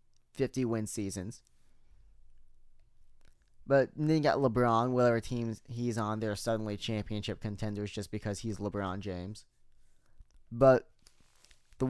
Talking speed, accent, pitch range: 115 wpm, American, 100-130 Hz